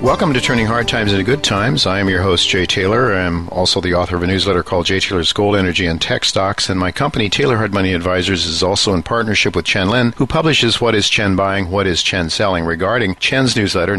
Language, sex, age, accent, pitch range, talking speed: English, male, 50-69, American, 90-110 Hz, 245 wpm